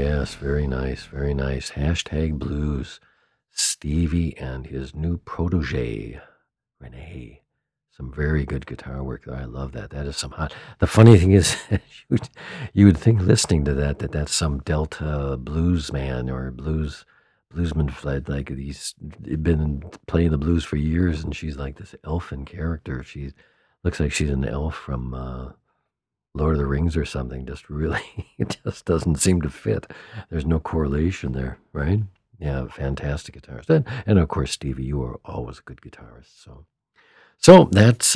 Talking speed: 160 wpm